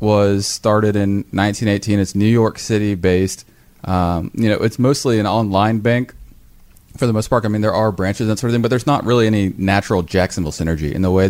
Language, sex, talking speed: English, male, 225 wpm